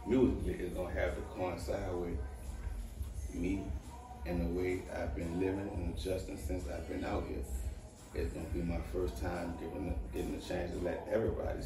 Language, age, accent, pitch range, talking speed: English, 30-49, American, 85-95 Hz, 190 wpm